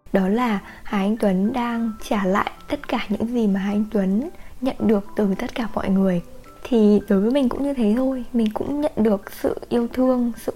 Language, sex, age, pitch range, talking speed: Vietnamese, female, 10-29, 200-250 Hz, 220 wpm